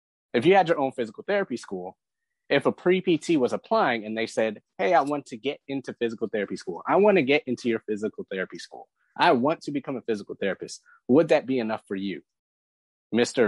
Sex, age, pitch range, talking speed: male, 30-49, 120-195 Hz, 215 wpm